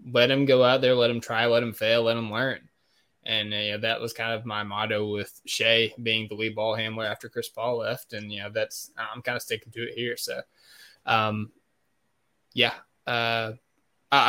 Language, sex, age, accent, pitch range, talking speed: English, male, 20-39, American, 110-130 Hz, 205 wpm